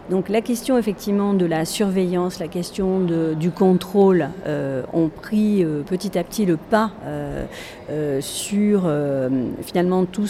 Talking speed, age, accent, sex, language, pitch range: 150 wpm, 40-59, French, female, French, 170-205 Hz